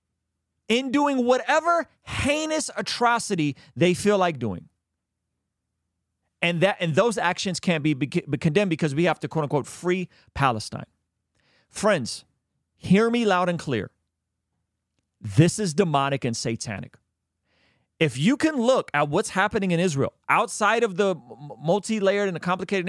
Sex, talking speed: male, 140 wpm